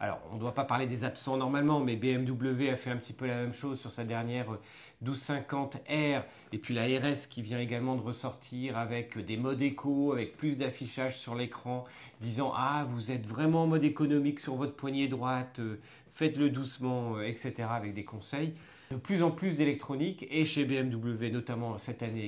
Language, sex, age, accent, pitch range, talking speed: French, male, 40-59, French, 120-150 Hz, 190 wpm